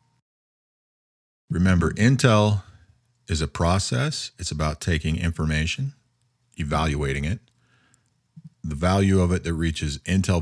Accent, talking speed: American, 105 wpm